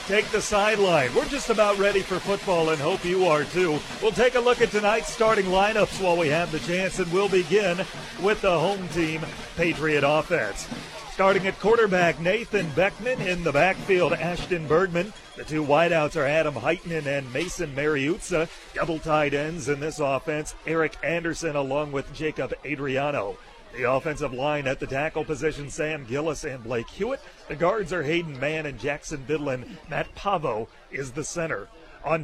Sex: male